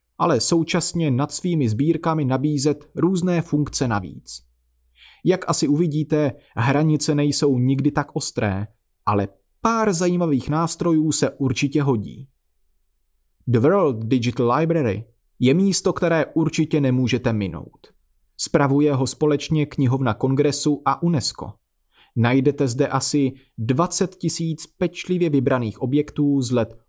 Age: 30-49